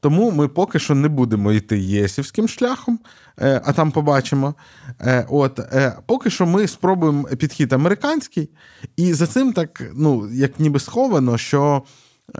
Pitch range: 115-155 Hz